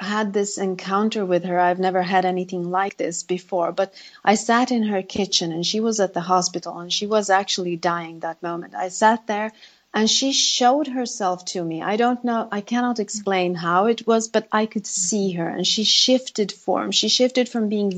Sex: female